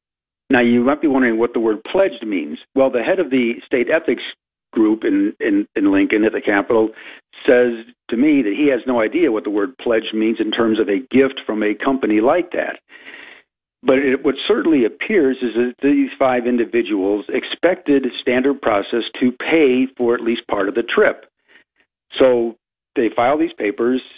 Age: 50-69